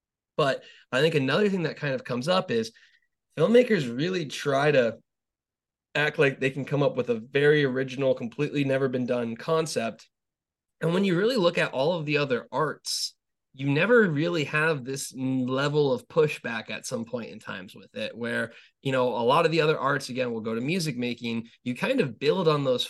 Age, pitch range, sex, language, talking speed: 20-39, 120-155 Hz, male, English, 205 wpm